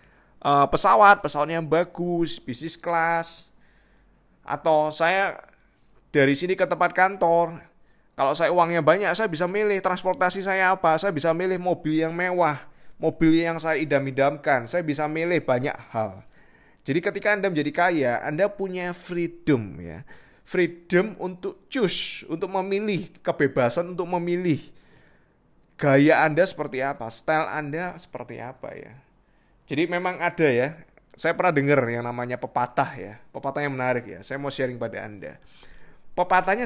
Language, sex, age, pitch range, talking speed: Indonesian, male, 20-39, 140-185 Hz, 140 wpm